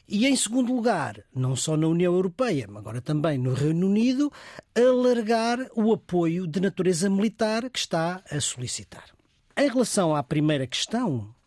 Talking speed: 155 wpm